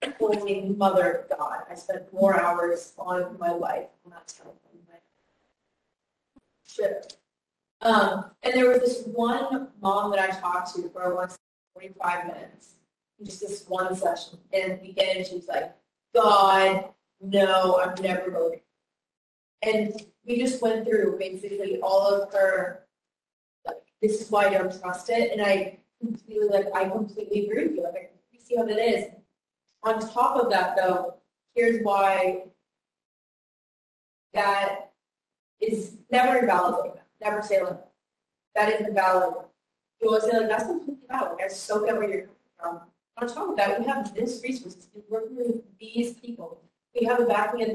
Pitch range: 190-230 Hz